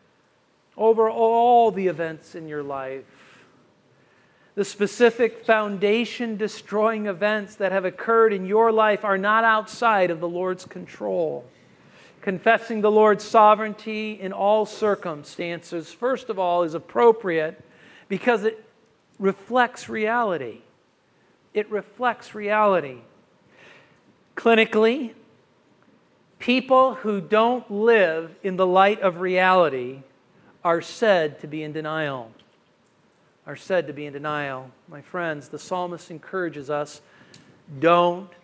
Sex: male